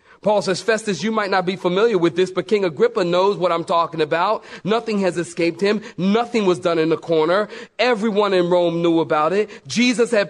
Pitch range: 165-220 Hz